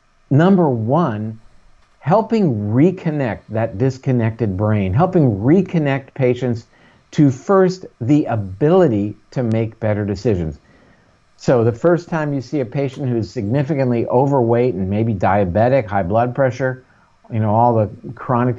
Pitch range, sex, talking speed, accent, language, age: 110-145 Hz, male, 130 wpm, American, English, 50-69